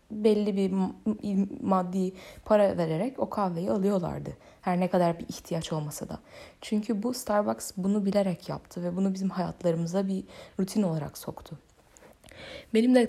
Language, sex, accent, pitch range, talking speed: Turkish, female, native, 165-195 Hz, 140 wpm